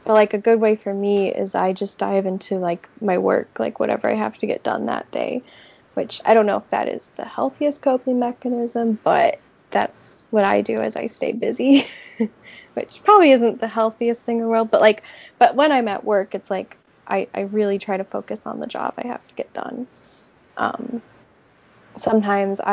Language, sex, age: English, female, 10-29